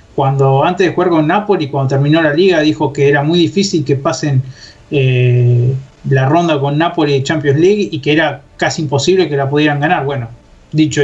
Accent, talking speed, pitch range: Argentinian, 195 wpm, 130-165 Hz